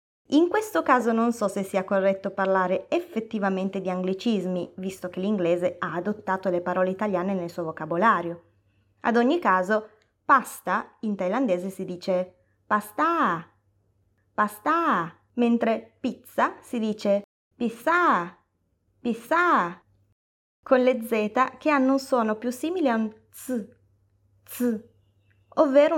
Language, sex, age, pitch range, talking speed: Italian, female, 20-39, 185-260 Hz, 120 wpm